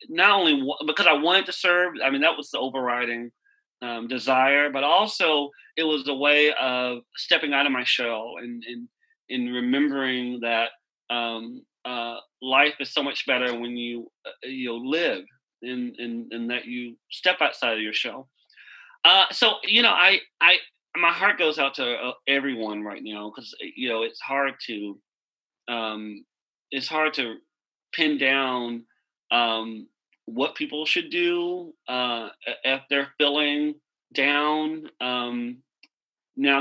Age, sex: 30-49, male